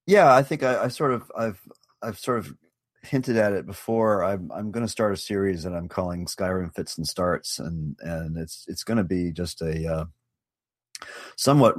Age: 40-59